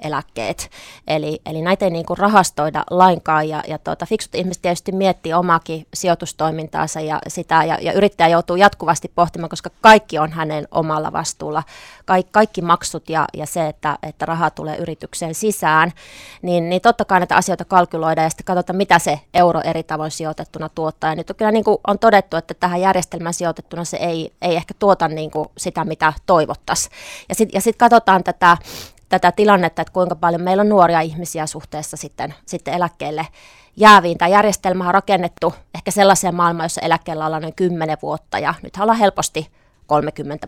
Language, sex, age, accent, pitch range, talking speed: Finnish, female, 20-39, native, 155-190 Hz, 175 wpm